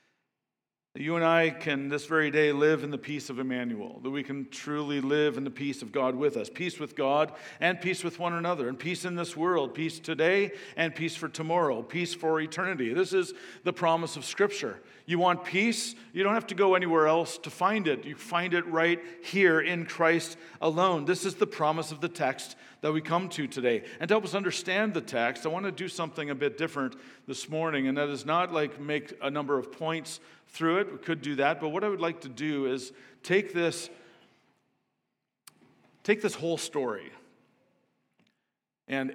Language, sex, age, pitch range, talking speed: English, male, 50-69, 135-175 Hz, 205 wpm